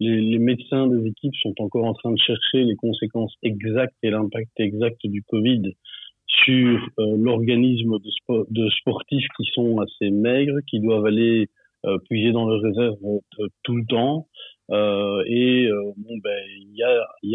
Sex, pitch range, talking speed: male, 105-125 Hz, 175 wpm